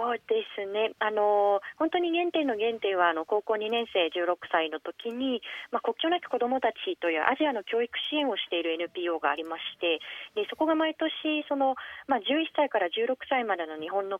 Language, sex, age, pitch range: Japanese, female, 40-59, 180-285 Hz